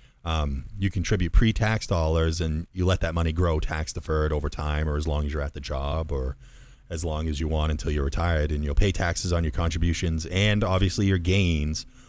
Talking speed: 210 wpm